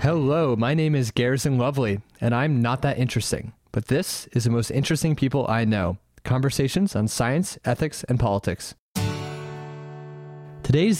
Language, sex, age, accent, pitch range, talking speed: English, male, 30-49, American, 105-135 Hz, 145 wpm